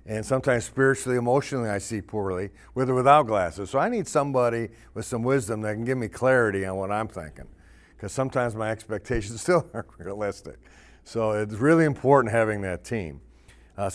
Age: 50-69